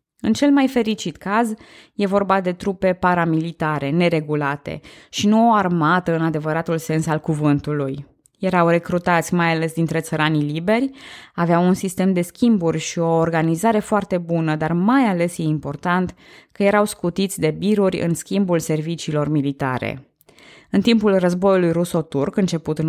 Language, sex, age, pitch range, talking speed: Romanian, female, 20-39, 160-200 Hz, 150 wpm